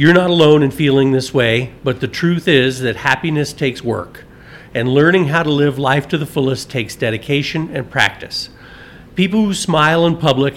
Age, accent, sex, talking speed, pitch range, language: 50-69, American, male, 185 wpm, 120-155 Hz, English